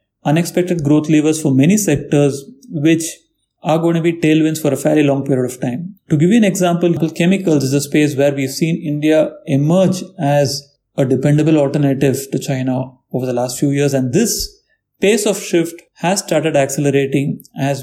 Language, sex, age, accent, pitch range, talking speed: English, male, 30-49, Indian, 140-170 Hz, 180 wpm